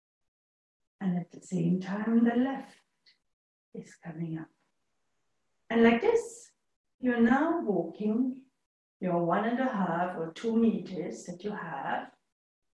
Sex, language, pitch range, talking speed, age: female, English, 175-260 Hz, 125 wpm, 60-79